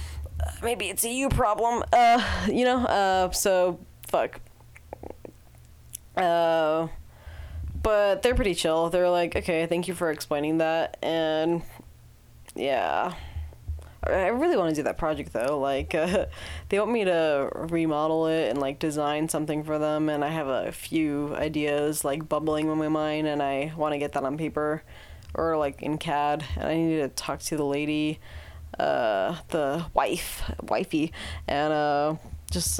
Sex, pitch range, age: female, 135-165 Hz, 20-39